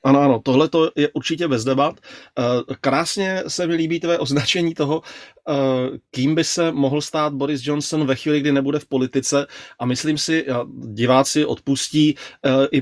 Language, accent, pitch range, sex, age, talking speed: Czech, native, 130-155 Hz, male, 30-49, 155 wpm